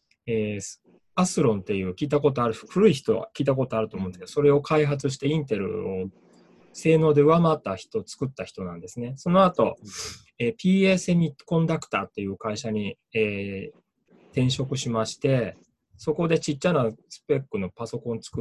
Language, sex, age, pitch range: Japanese, male, 20-39, 110-160 Hz